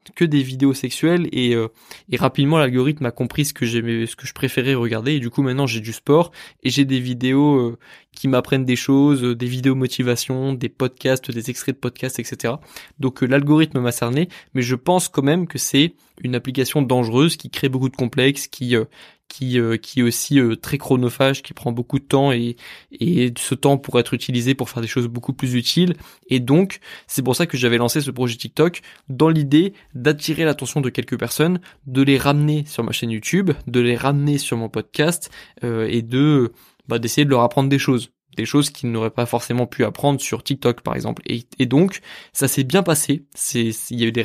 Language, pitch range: French, 120-145 Hz